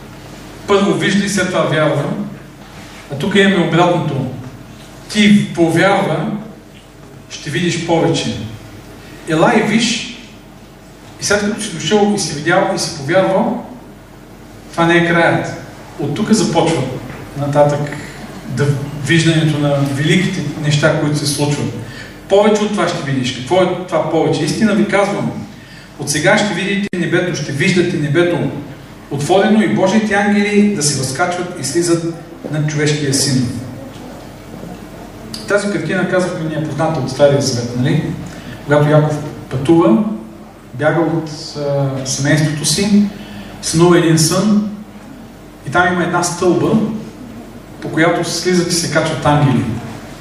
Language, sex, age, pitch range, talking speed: Bulgarian, male, 40-59, 145-180 Hz, 135 wpm